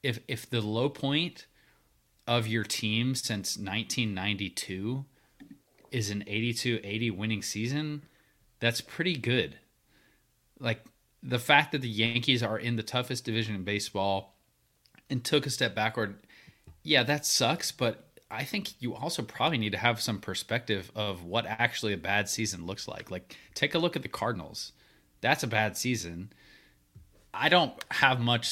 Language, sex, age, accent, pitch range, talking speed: English, male, 20-39, American, 100-120 Hz, 150 wpm